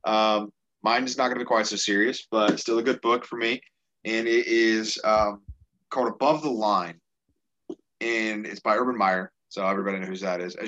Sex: male